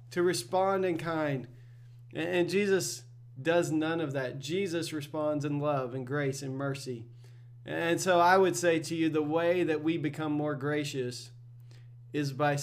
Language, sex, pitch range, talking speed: English, male, 130-175 Hz, 160 wpm